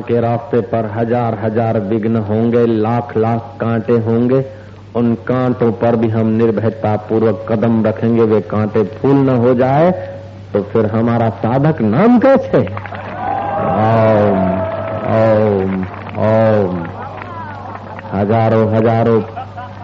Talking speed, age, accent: 100 wpm, 50-69, native